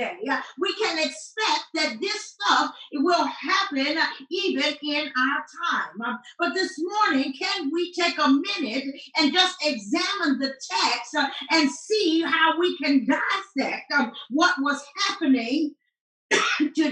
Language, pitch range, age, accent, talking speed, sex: English, 280-355 Hz, 50-69, American, 125 wpm, female